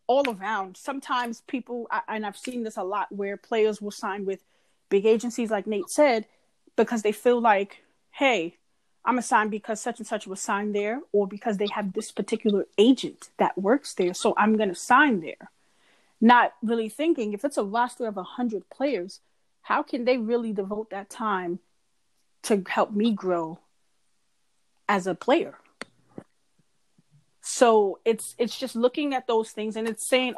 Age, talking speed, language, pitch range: 30-49, 170 wpm, English, 205-245 Hz